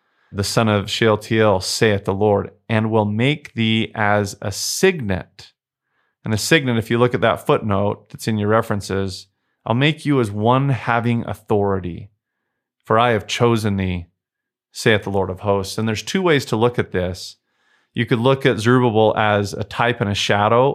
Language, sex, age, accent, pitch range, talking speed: English, male, 30-49, American, 100-120 Hz, 180 wpm